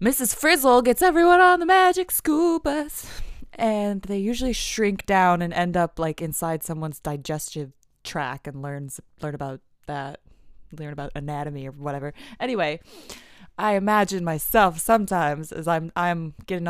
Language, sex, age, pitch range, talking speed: English, female, 20-39, 165-245 Hz, 145 wpm